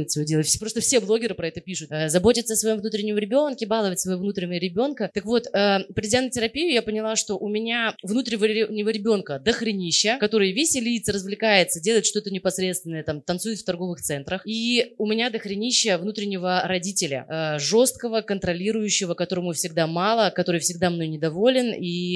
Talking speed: 160 wpm